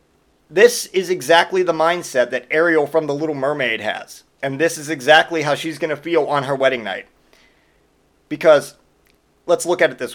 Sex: male